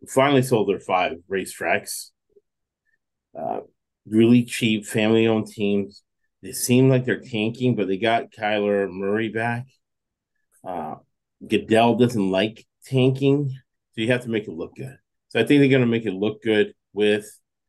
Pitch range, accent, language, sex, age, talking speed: 100-130 Hz, American, English, male, 30-49, 155 wpm